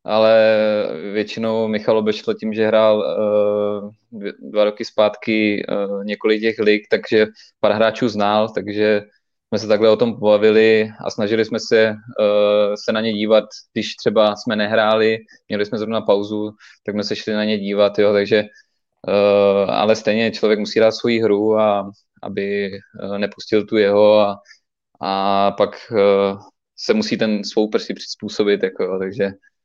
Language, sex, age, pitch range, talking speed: Czech, male, 20-39, 105-110 Hz, 155 wpm